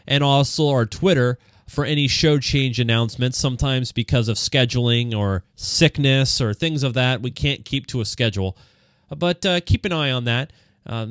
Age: 30-49